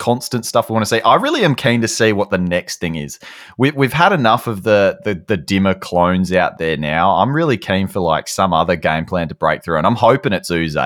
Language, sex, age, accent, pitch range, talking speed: English, male, 20-39, Australian, 85-115 Hz, 255 wpm